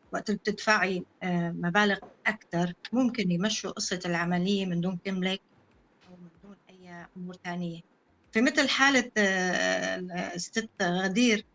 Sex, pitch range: female, 180-225 Hz